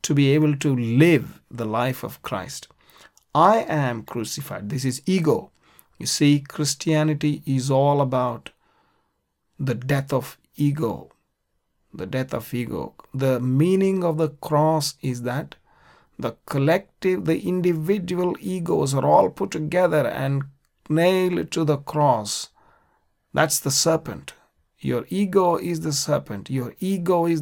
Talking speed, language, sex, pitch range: 135 wpm, English, male, 135-165 Hz